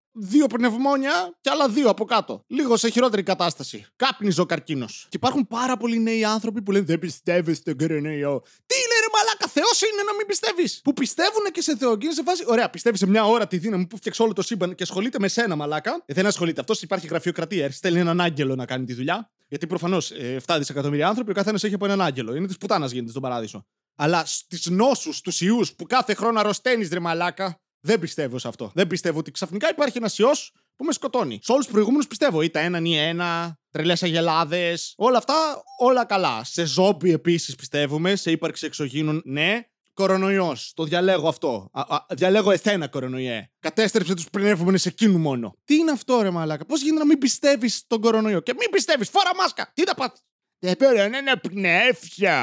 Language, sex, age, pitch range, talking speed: Greek, male, 20-39, 165-245 Hz, 205 wpm